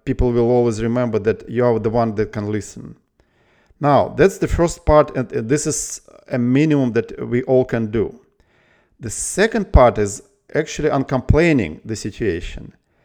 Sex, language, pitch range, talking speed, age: male, English, 130-170 Hz, 160 wpm, 50-69